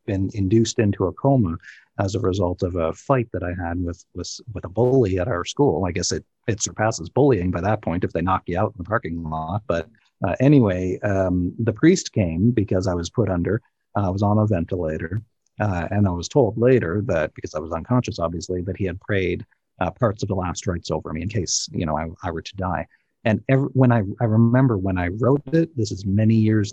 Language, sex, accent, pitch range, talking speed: English, male, American, 95-125 Hz, 230 wpm